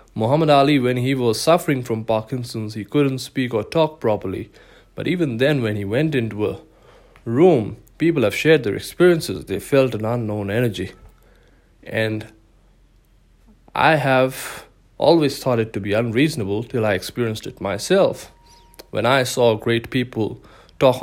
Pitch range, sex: 110-140 Hz, male